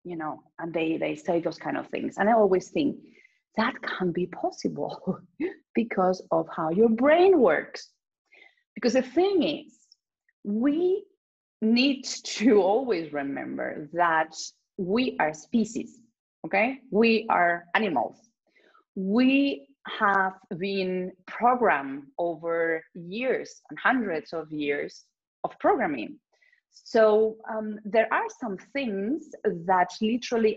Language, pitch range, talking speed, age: Spanish, 175-260 Hz, 120 wpm, 30-49